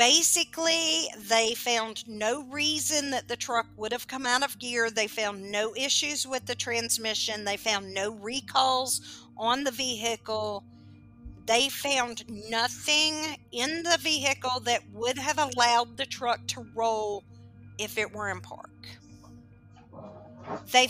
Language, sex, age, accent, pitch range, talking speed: English, female, 50-69, American, 210-260 Hz, 140 wpm